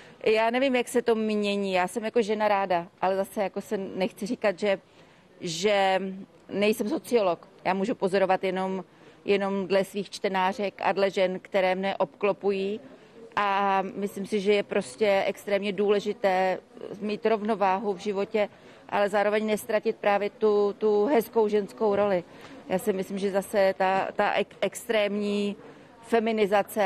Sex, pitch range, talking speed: female, 185-210 Hz, 145 wpm